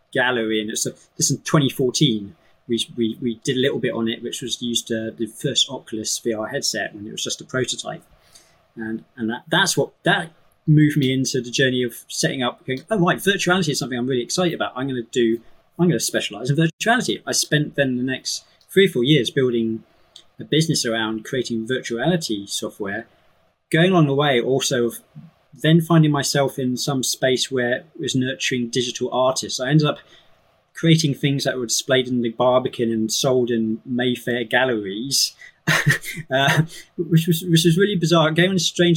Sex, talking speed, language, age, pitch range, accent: male, 190 wpm, English, 20-39, 125-160 Hz, British